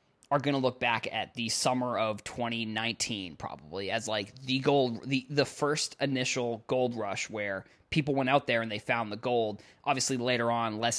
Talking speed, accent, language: 190 wpm, American, English